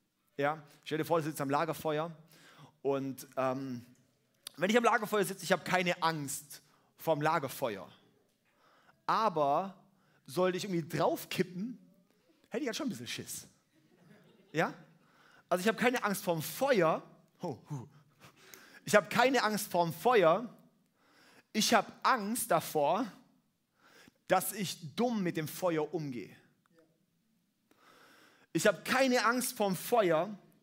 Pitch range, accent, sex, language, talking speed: 155-205 Hz, German, male, German, 125 wpm